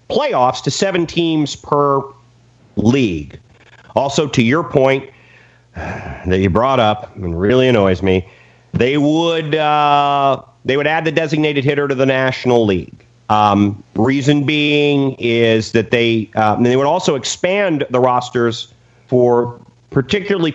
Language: English